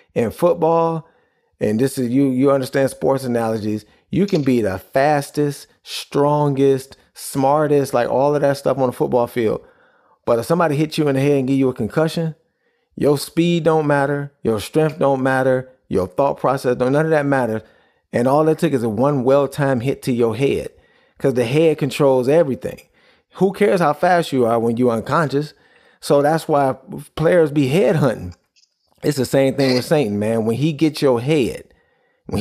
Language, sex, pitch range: English, male, 120-150 Hz